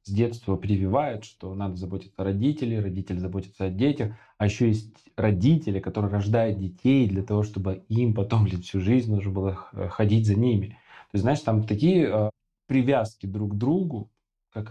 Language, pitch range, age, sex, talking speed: Russian, 105-125 Hz, 20-39, male, 175 wpm